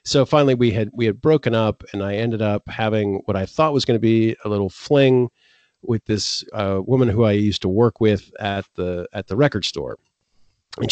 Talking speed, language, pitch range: 220 wpm, English, 100-125 Hz